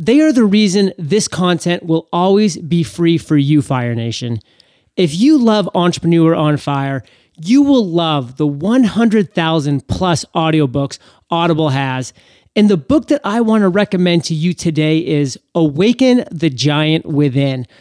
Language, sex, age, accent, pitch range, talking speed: English, male, 30-49, American, 150-200 Hz, 150 wpm